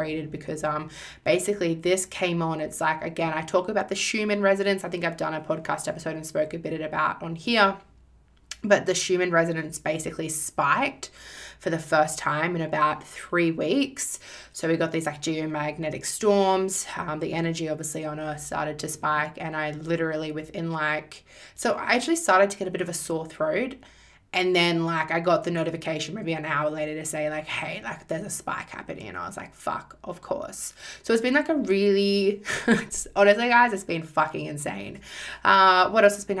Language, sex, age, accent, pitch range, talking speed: English, female, 20-39, Australian, 155-190 Hz, 200 wpm